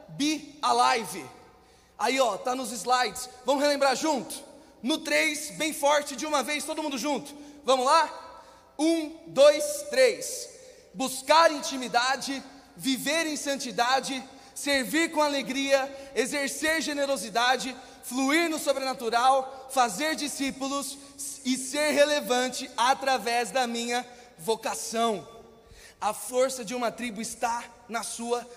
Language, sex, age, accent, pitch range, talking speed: Portuguese, male, 20-39, Brazilian, 240-280 Hz, 115 wpm